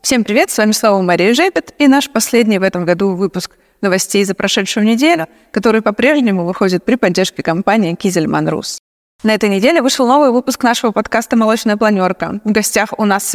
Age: 20-39